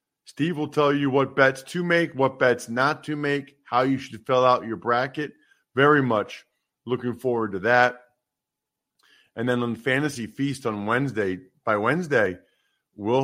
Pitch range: 115-160 Hz